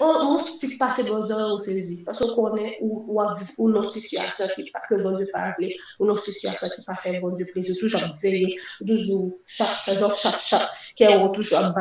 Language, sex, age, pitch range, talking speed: French, female, 30-49, 185-215 Hz, 130 wpm